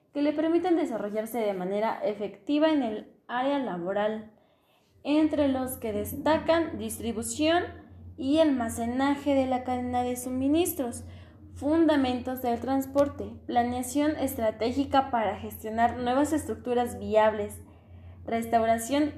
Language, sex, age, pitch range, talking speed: Spanish, female, 10-29, 210-280 Hz, 105 wpm